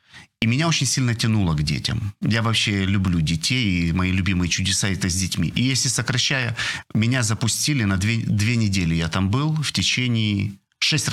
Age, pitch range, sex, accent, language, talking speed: 40-59, 95-120 Hz, male, native, Ukrainian, 185 wpm